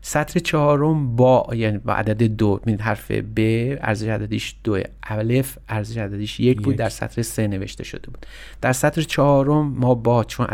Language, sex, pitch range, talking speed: Persian, male, 110-135 Hz, 165 wpm